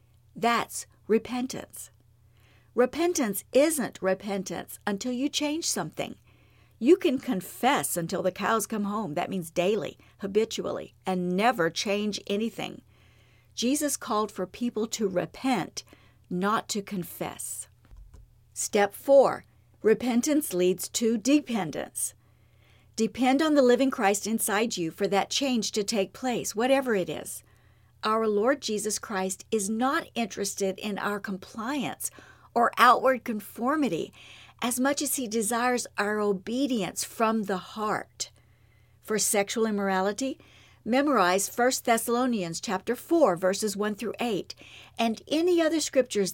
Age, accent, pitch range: 50-69, American, 185-245 Hz